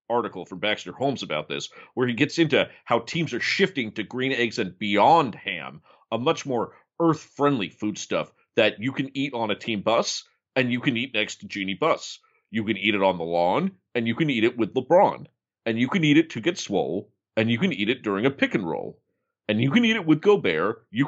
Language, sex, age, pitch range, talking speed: English, male, 40-59, 100-155 Hz, 230 wpm